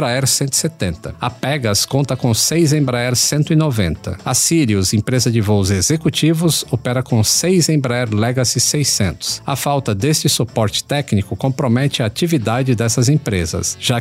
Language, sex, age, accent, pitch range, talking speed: Portuguese, male, 50-69, Brazilian, 110-145 Hz, 135 wpm